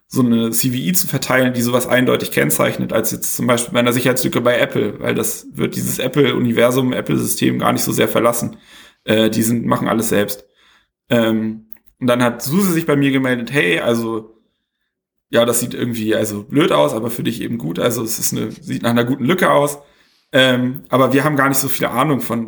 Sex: male